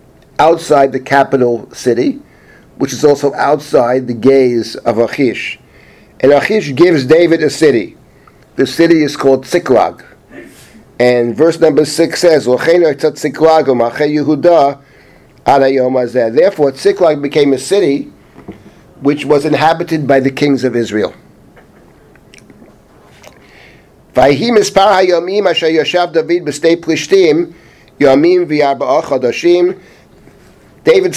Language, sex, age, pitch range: English, male, 50-69, 125-160 Hz